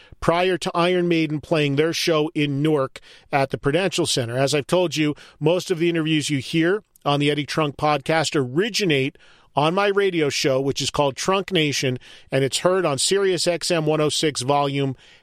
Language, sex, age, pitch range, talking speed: English, male, 40-59, 145-175 Hz, 180 wpm